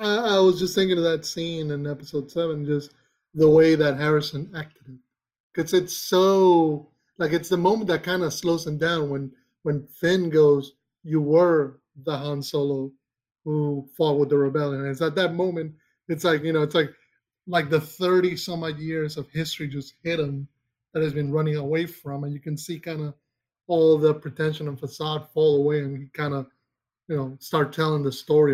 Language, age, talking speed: English, 30-49, 200 wpm